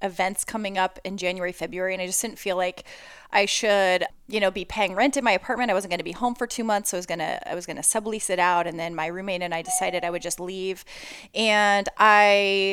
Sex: female